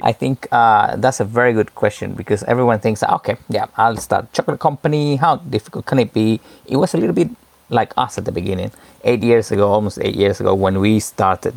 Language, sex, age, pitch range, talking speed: English, male, 30-49, 105-125 Hz, 225 wpm